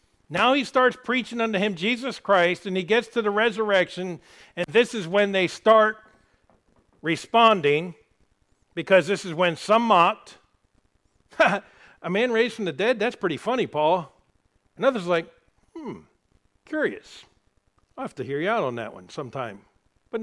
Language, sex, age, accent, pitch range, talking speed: English, male, 60-79, American, 145-205 Hz, 160 wpm